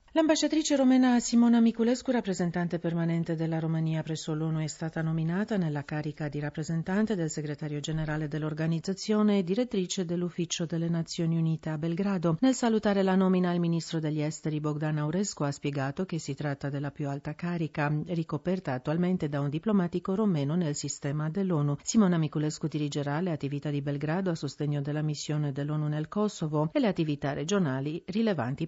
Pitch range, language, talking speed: 145-175 Hz, Italian, 160 wpm